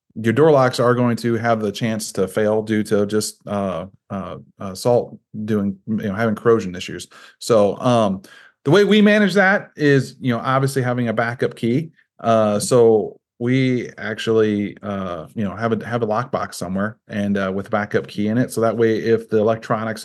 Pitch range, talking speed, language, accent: 105-125 Hz, 195 wpm, English, American